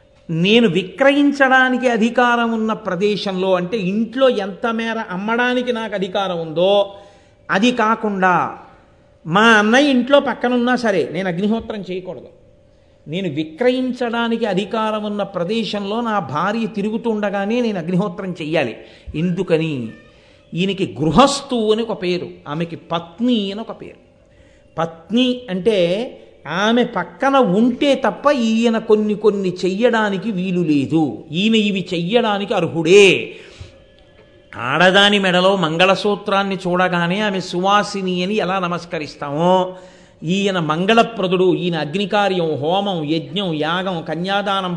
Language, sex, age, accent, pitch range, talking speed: Telugu, male, 50-69, native, 180-225 Hz, 105 wpm